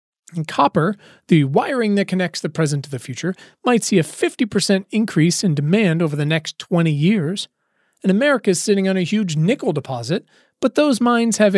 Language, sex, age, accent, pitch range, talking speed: English, male, 30-49, American, 160-215 Hz, 185 wpm